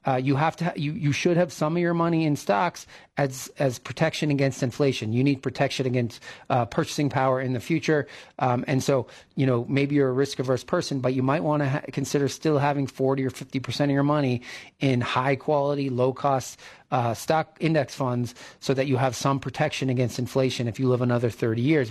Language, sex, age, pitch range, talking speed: English, male, 40-59, 125-150 Hz, 210 wpm